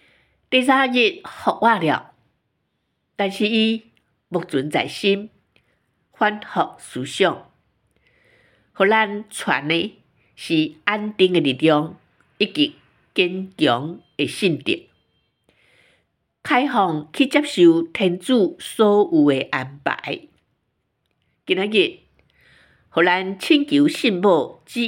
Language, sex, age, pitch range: Chinese, female, 50-69, 170-245 Hz